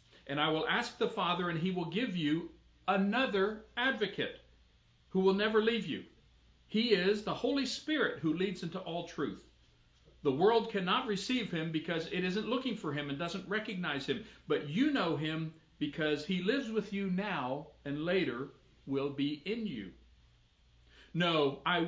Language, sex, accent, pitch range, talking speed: English, male, American, 125-195 Hz, 165 wpm